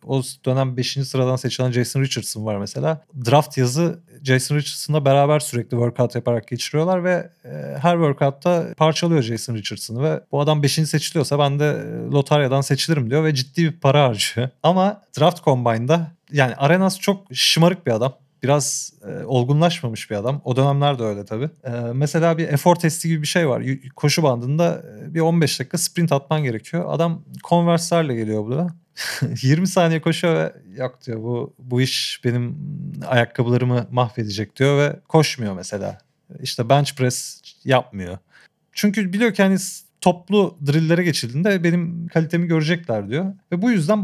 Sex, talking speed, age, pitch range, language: male, 150 wpm, 40-59, 125-165 Hz, Turkish